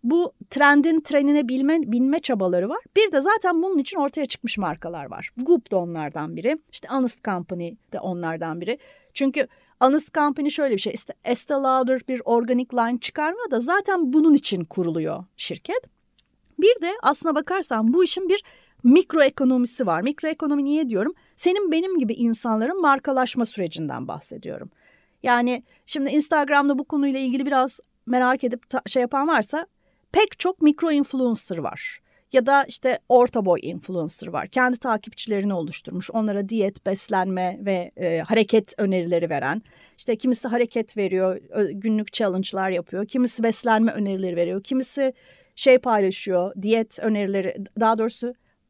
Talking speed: 145 wpm